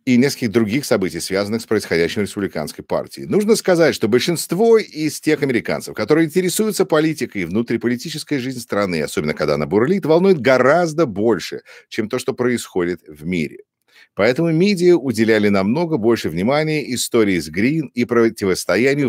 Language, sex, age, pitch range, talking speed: English, male, 50-69, 110-165 Hz, 150 wpm